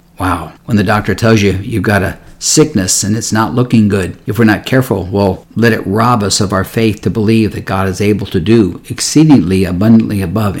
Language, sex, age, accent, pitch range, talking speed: English, male, 50-69, American, 95-115 Hz, 215 wpm